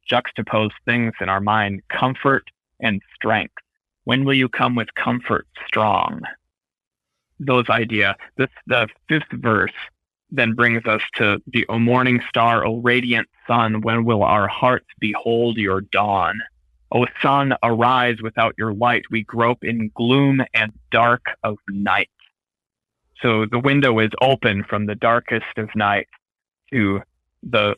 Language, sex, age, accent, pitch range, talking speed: English, male, 30-49, American, 110-130 Hz, 140 wpm